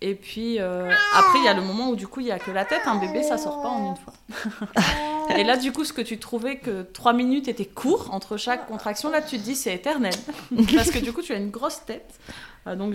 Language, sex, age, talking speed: French, female, 20-39, 285 wpm